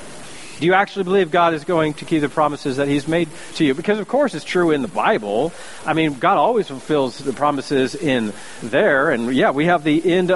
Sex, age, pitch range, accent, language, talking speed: male, 40-59, 140-180 Hz, American, English, 225 wpm